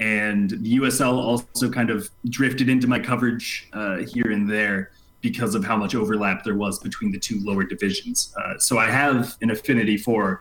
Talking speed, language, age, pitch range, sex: 190 wpm, English, 20-39, 100-125 Hz, male